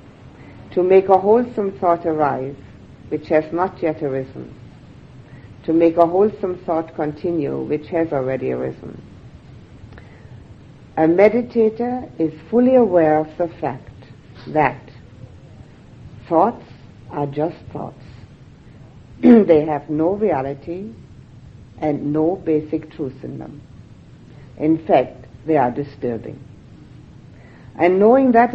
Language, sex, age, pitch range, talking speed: English, female, 60-79, 130-170 Hz, 110 wpm